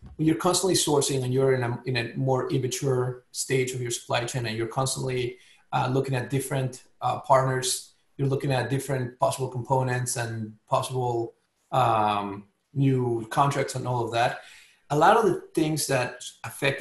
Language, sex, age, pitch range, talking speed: English, male, 30-49, 120-140 Hz, 170 wpm